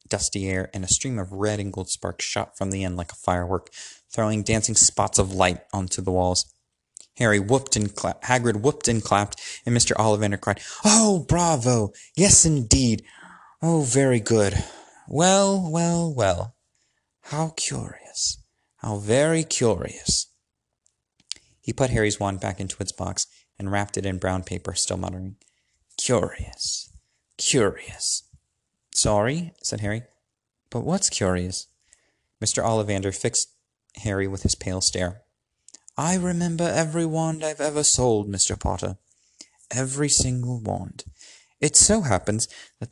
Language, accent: English, American